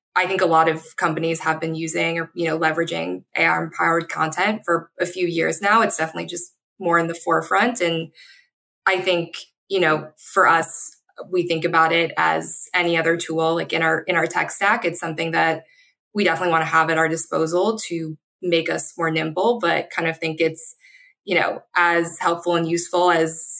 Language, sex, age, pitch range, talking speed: English, female, 20-39, 160-175 Hz, 200 wpm